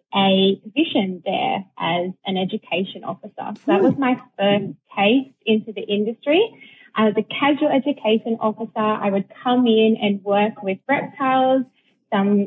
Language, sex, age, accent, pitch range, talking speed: English, female, 20-39, Australian, 195-230 Hz, 145 wpm